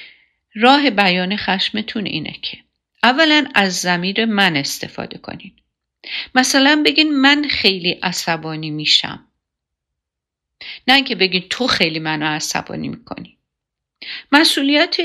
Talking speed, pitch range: 105 wpm, 195-290 Hz